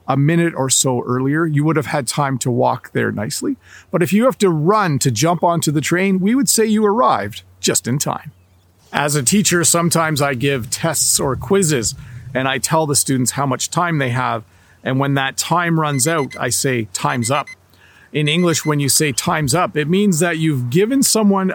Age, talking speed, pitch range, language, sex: 40-59, 210 wpm, 135-185 Hz, English, male